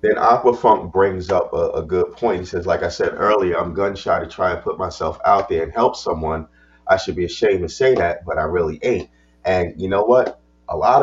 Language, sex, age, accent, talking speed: English, male, 30-49, American, 245 wpm